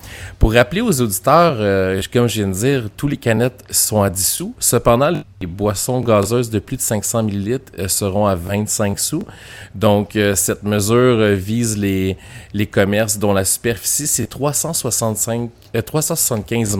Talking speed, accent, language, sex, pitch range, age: 170 wpm, Canadian, French, male, 100-120 Hz, 30-49